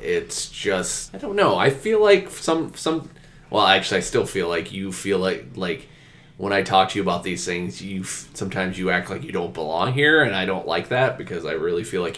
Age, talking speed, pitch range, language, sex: 20-39, 230 wpm, 95-145 Hz, English, male